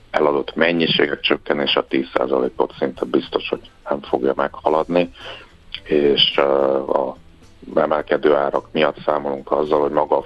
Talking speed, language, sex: 125 wpm, Hungarian, male